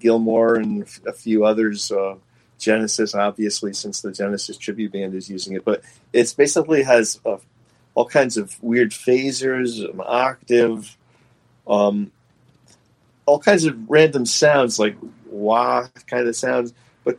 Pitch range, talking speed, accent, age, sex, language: 110-145 Hz, 140 wpm, American, 40-59, male, English